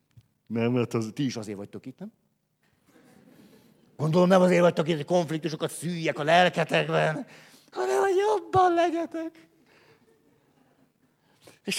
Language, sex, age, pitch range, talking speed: Hungarian, male, 60-79, 160-220 Hz, 120 wpm